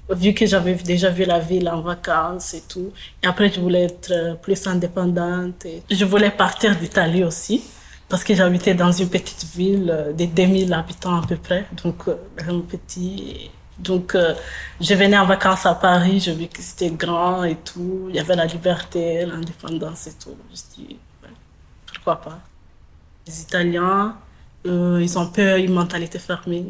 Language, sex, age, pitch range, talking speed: French, female, 20-39, 170-185 Hz, 180 wpm